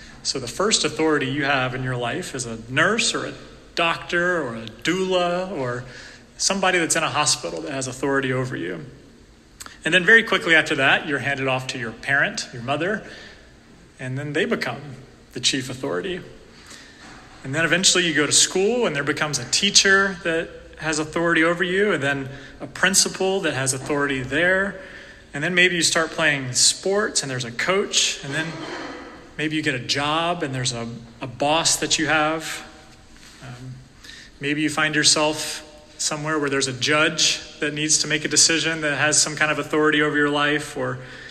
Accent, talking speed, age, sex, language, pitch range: American, 185 wpm, 30-49, male, English, 135-175 Hz